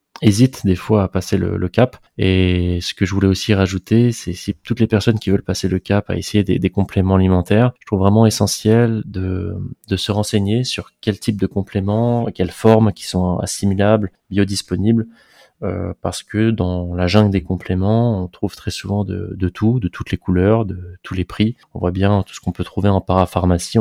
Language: French